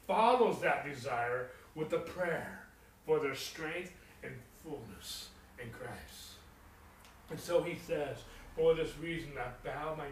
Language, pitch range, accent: English, 130-170 Hz, American